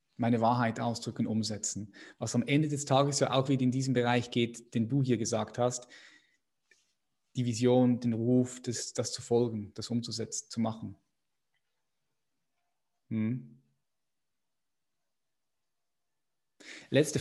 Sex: male